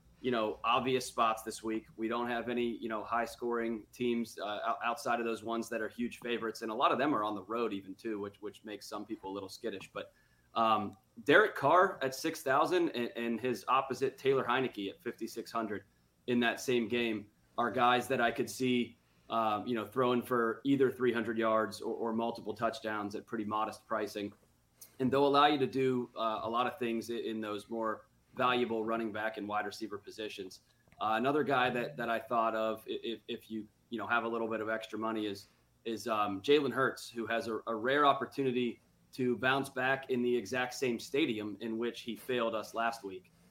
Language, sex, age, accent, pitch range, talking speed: English, male, 20-39, American, 105-120 Hz, 205 wpm